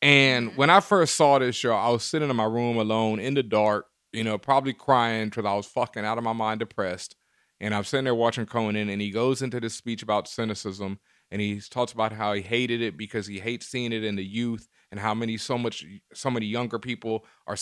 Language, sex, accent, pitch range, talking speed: English, male, American, 110-130 Hz, 240 wpm